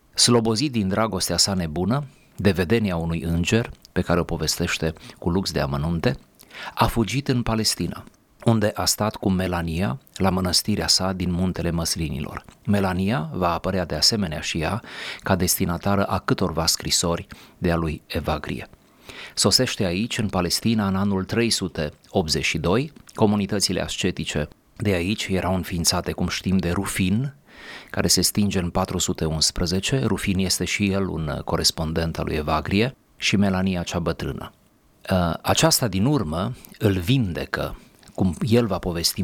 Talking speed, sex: 140 wpm, male